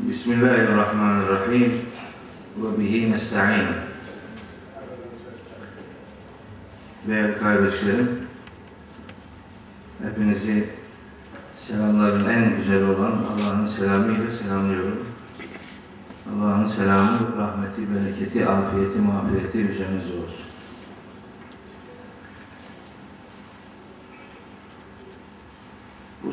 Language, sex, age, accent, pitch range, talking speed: Turkish, male, 50-69, native, 100-115 Hz, 50 wpm